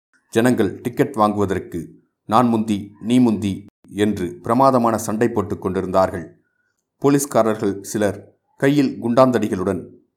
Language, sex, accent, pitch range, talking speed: Tamil, male, native, 100-120 Hz, 95 wpm